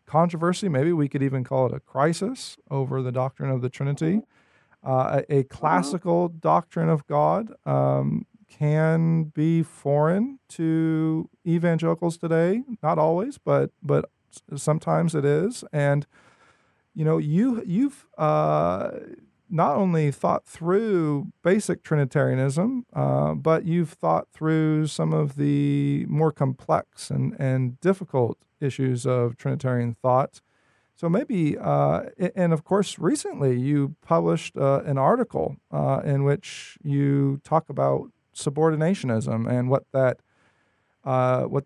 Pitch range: 135-170 Hz